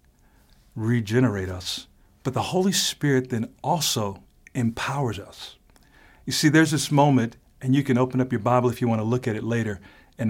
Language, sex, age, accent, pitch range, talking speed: English, male, 50-69, American, 115-150 Hz, 175 wpm